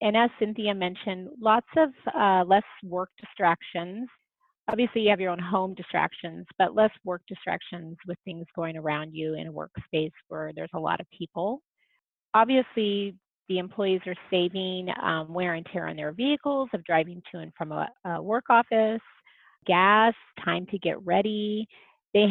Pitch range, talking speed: 180-240 Hz, 165 wpm